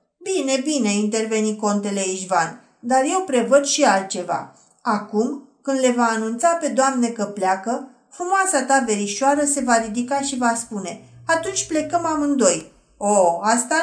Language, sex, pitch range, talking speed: Romanian, female, 215-280 Hz, 145 wpm